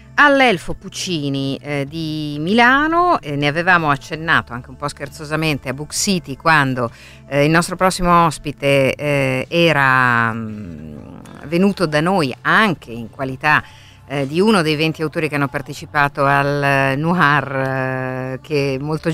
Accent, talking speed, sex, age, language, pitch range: native, 140 wpm, female, 50-69, Italian, 130-160 Hz